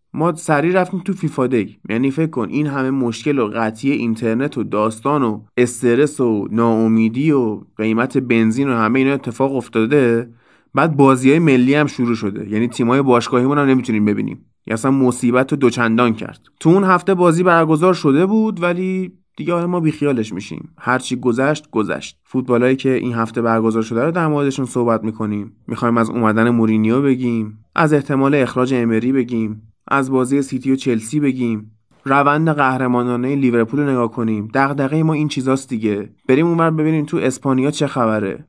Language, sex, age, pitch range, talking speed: Persian, male, 20-39, 115-140 Hz, 170 wpm